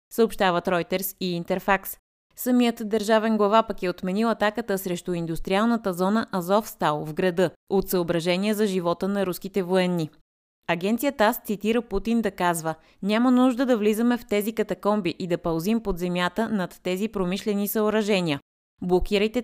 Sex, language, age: female, Bulgarian, 20-39